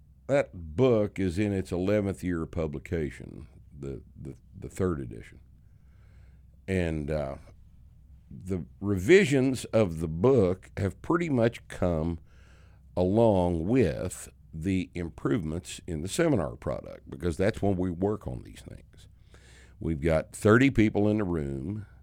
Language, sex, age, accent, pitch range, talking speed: English, male, 60-79, American, 75-100 Hz, 130 wpm